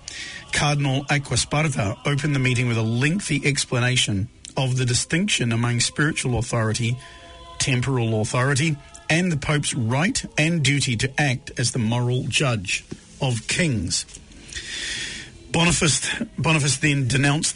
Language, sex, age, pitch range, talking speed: English, male, 50-69, 115-145 Hz, 120 wpm